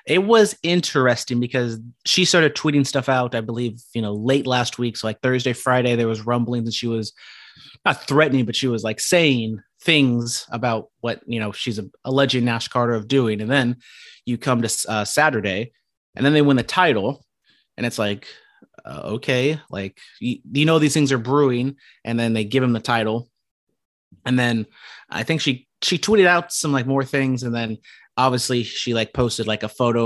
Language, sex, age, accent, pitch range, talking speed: English, male, 30-49, American, 115-135 Hz, 195 wpm